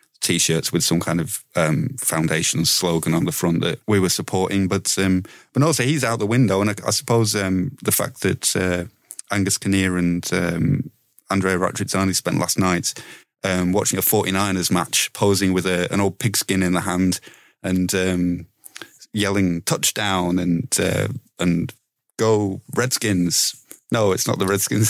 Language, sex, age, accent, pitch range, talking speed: English, male, 30-49, British, 95-115 Hz, 165 wpm